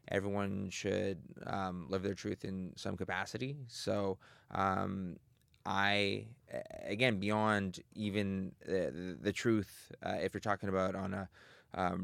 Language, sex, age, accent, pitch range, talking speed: English, male, 20-39, American, 95-105 Hz, 130 wpm